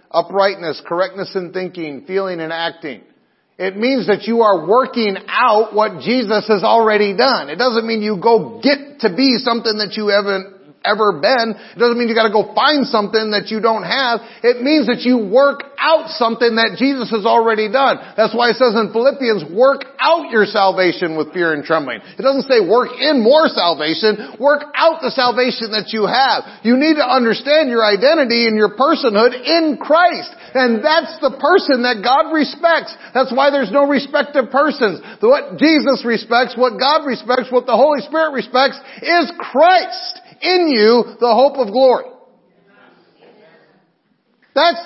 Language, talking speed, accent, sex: English, 175 wpm, American, male